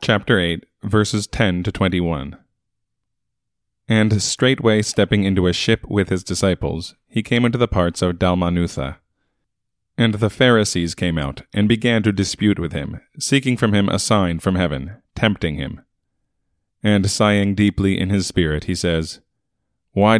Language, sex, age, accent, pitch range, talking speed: English, male, 30-49, American, 90-110 Hz, 150 wpm